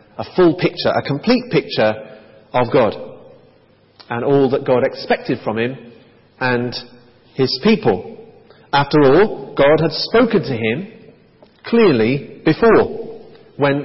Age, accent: 40-59, British